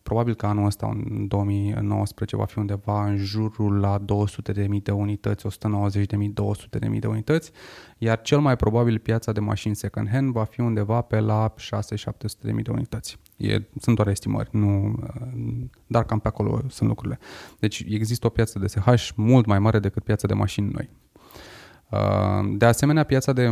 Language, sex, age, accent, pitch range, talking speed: Romanian, male, 20-39, native, 100-120 Hz, 165 wpm